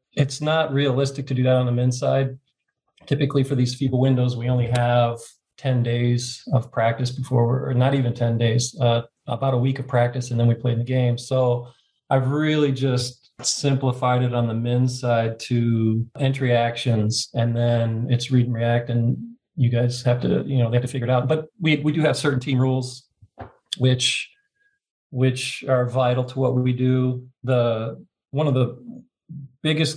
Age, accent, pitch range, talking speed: 40-59, American, 120-140 Hz, 185 wpm